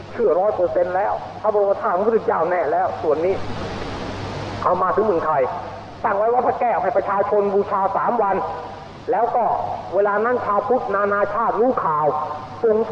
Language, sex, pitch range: Thai, male, 195-280 Hz